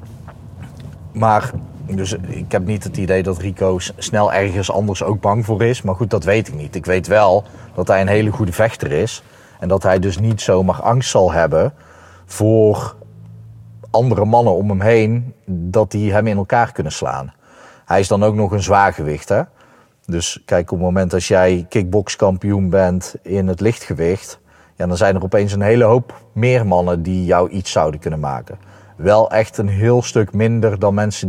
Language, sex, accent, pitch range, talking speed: Dutch, male, Dutch, 90-110 Hz, 185 wpm